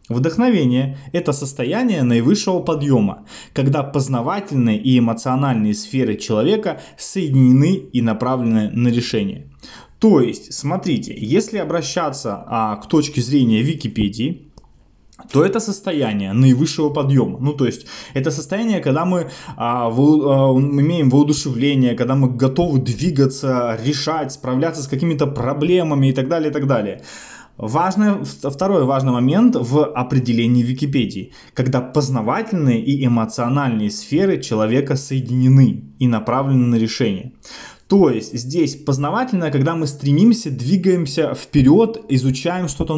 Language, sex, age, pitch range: Russian, male, 20-39, 125-160 Hz